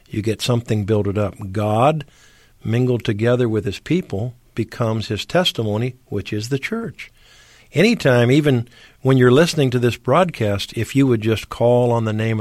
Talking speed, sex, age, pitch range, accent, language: 165 wpm, male, 50-69, 110-140 Hz, American, English